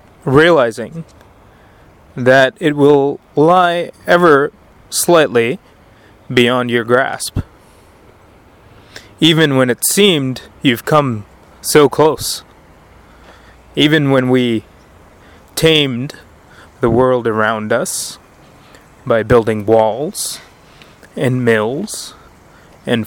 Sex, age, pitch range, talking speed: male, 20-39, 110-140 Hz, 85 wpm